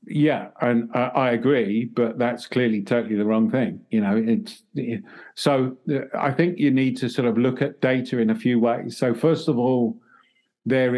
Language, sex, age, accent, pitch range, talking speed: English, male, 50-69, British, 115-130 Hz, 185 wpm